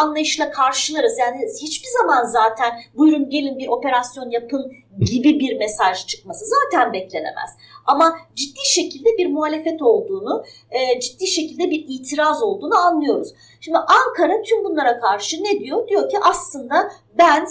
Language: Turkish